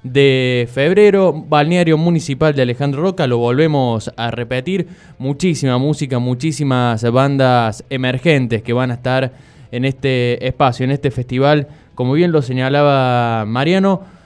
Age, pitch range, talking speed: 20-39, 120-155 Hz, 130 wpm